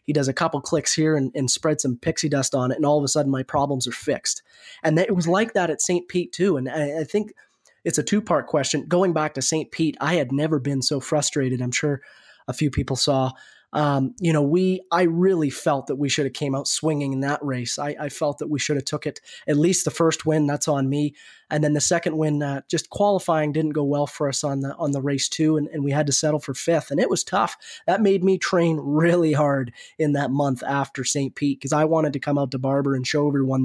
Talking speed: 260 wpm